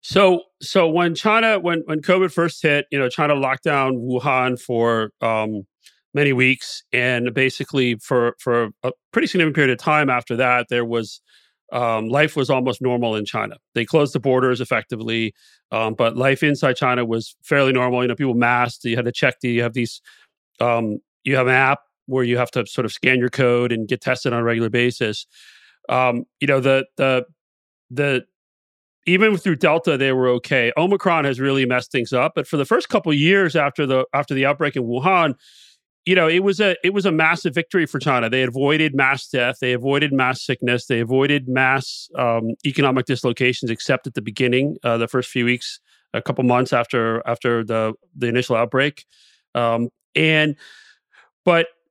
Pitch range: 120-145 Hz